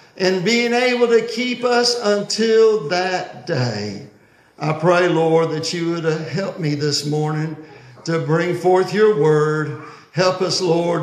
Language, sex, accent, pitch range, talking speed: English, male, American, 155-200 Hz, 145 wpm